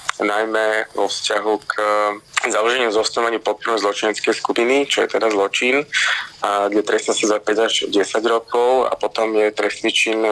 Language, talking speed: Slovak, 155 wpm